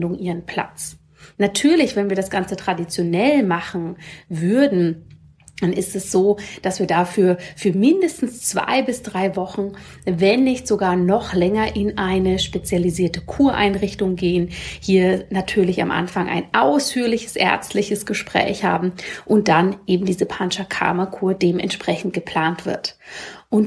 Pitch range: 180-210 Hz